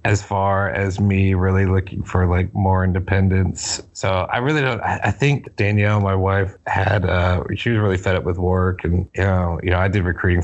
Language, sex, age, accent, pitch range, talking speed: English, male, 30-49, American, 90-100 Hz, 200 wpm